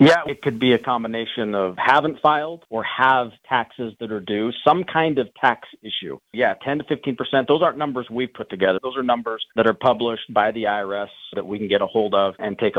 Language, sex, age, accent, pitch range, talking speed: English, male, 40-59, American, 105-130 Hz, 225 wpm